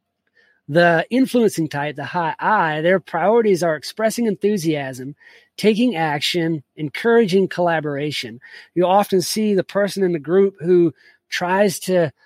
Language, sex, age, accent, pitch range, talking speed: English, male, 30-49, American, 155-195 Hz, 125 wpm